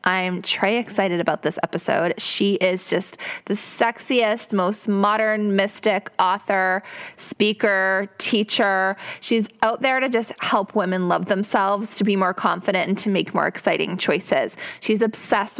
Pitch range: 185-220 Hz